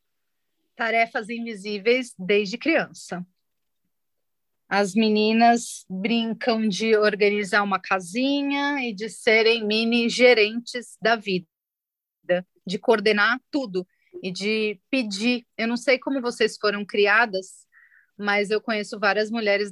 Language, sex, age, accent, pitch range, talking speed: Portuguese, female, 30-49, Brazilian, 205-250 Hz, 105 wpm